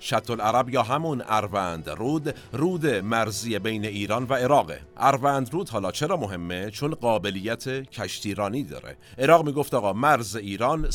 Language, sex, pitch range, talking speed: Persian, male, 105-135 Hz, 135 wpm